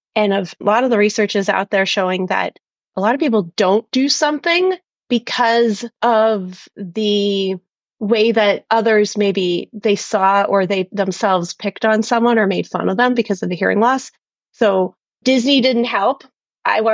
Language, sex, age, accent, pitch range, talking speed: English, female, 30-49, American, 205-255 Hz, 170 wpm